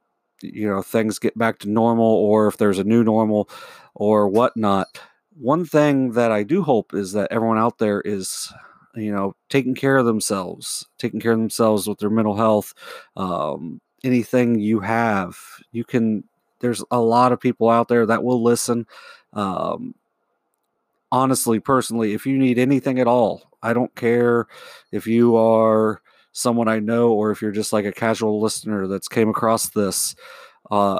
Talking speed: 170 wpm